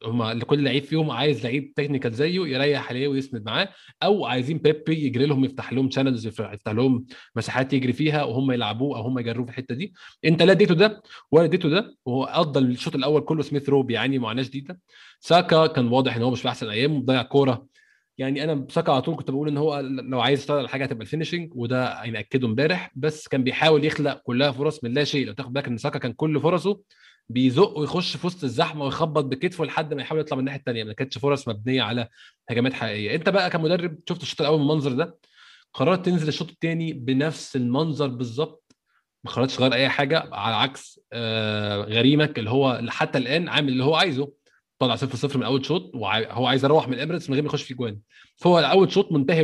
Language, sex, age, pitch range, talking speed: Arabic, male, 20-39, 125-155 Hz, 205 wpm